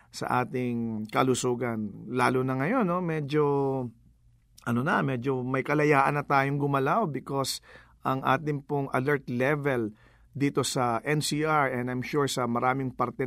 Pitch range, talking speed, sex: 120-150 Hz, 140 wpm, male